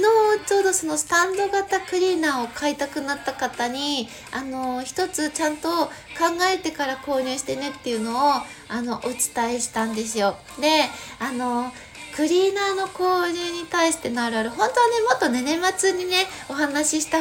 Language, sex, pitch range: Japanese, female, 240-330 Hz